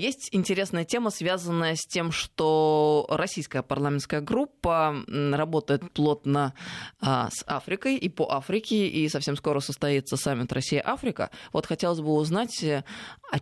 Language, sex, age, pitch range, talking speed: Russian, female, 20-39, 140-180 Hz, 135 wpm